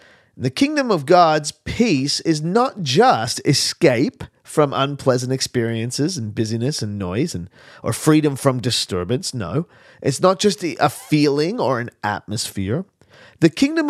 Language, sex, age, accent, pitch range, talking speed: English, male, 40-59, American, 110-150 Hz, 140 wpm